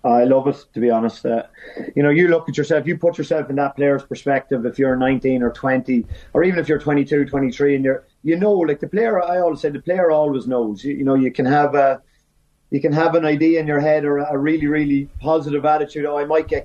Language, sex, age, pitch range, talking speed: English, male, 30-49, 135-155 Hz, 250 wpm